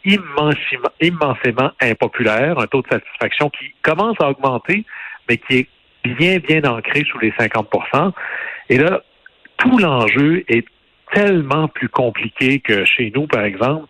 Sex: male